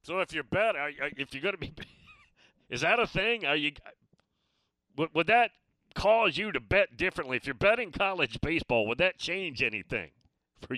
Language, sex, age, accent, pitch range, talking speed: English, male, 50-69, American, 115-175 Hz, 185 wpm